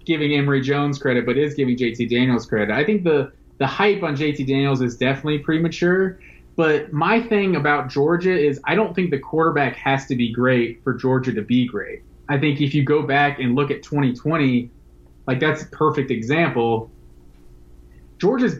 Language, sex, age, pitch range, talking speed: English, male, 20-39, 130-185 Hz, 185 wpm